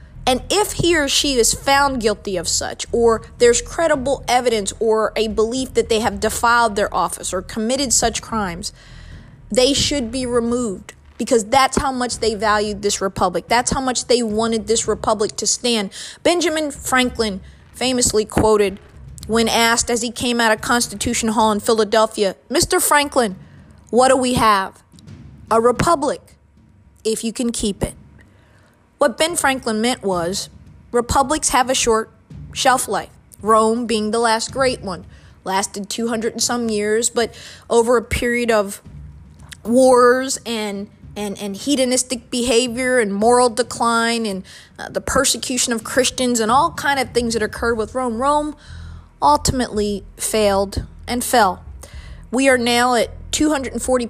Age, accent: 20-39, American